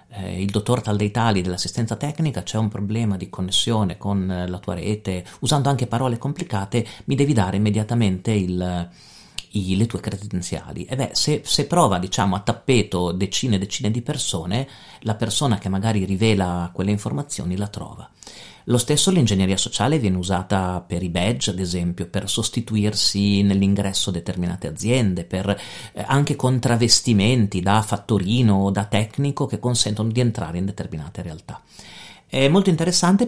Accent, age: native, 40-59